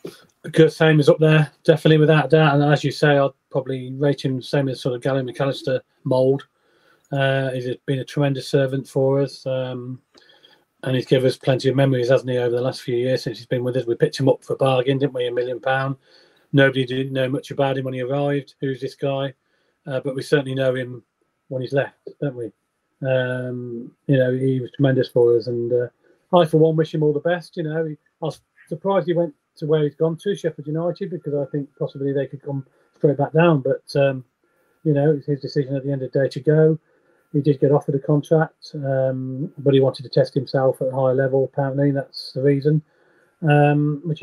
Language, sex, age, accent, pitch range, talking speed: English, male, 30-49, British, 135-155 Hz, 230 wpm